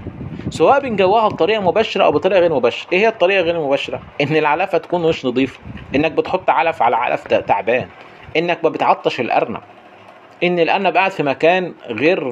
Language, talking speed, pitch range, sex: Arabic, 165 wpm, 140-205 Hz, male